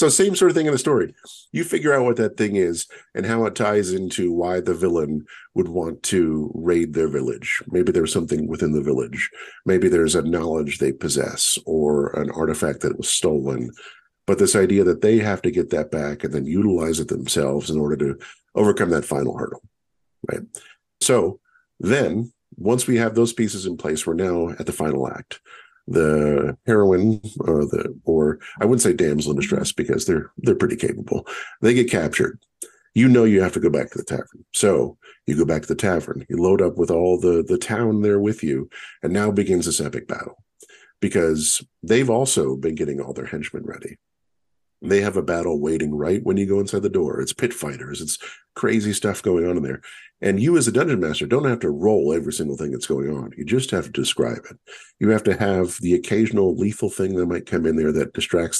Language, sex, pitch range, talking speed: English, male, 75-110 Hz, 210 wpm